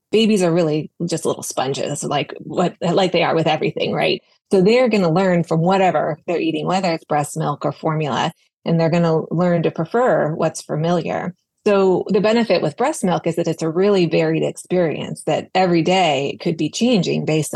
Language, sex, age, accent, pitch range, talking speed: English, female, 20-39, American, 160-190 Hz, 200 wpm